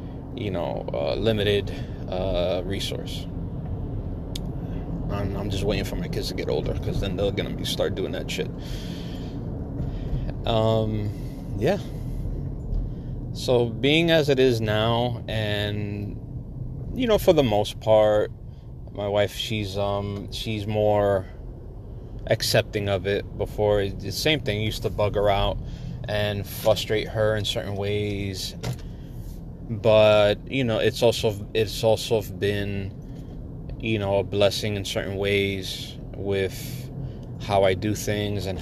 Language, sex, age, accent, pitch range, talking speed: English, male, 30-49, American, 100-120 Hz, 130 wpm